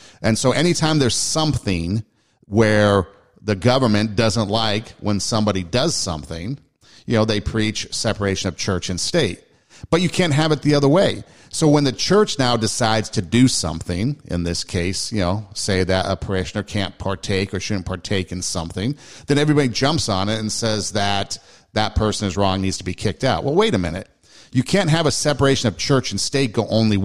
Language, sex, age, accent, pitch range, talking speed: English, male, 50-69, American, 100-130 Hz, 195 wpm